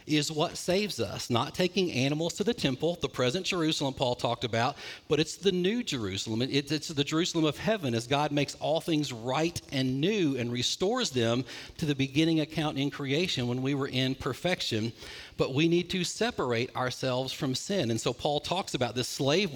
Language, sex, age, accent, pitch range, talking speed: English, male, 40-59, American, 125-160 Hz, 195 wpm